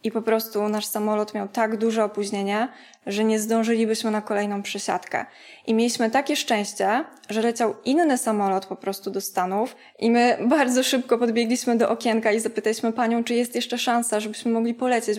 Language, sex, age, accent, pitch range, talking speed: Polish, female, 20-39, native, 210-240 Hz, 175 wpm